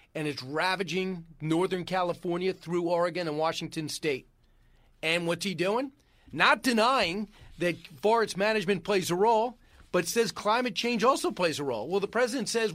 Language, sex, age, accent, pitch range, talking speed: English, male, 40-59, American, 150-200 Hz, 160 wpm